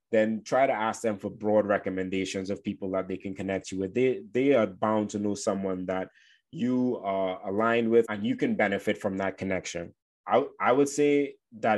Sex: male